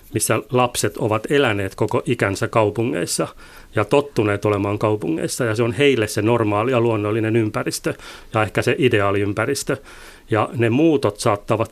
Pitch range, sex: 105-120 Hz, male